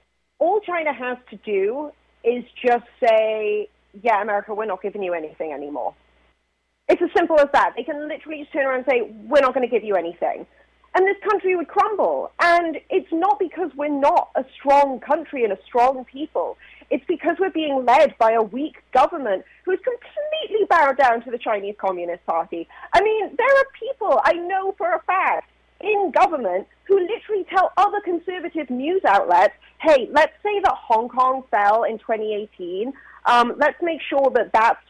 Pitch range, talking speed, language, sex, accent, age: 215-340 Hz, 180 wpm, English, female, British, 30-49